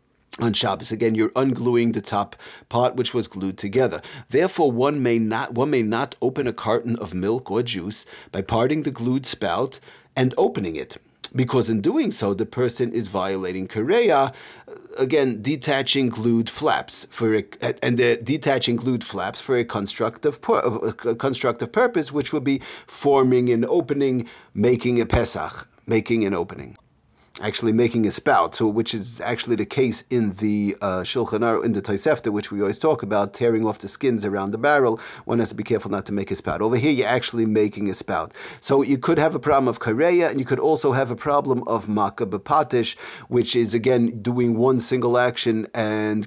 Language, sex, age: English, male, 40-59